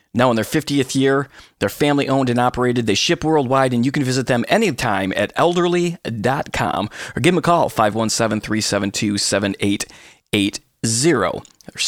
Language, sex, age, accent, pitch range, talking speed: English, male, 30-49, American, 110-155 Hz, 135 wpm